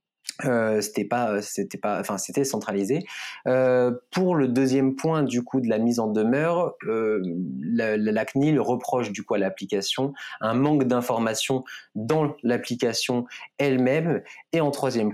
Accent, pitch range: French, 110-140 Hz